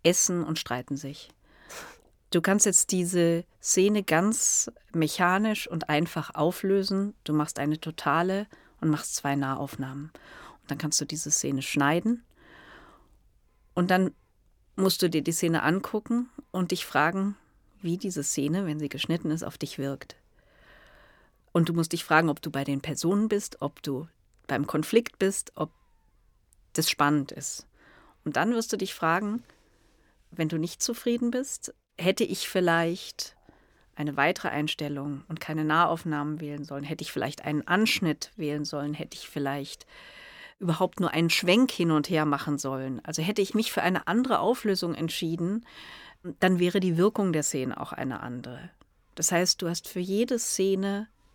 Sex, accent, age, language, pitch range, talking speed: female, German, 40-59, German, 150-195 Hz, 160 wpm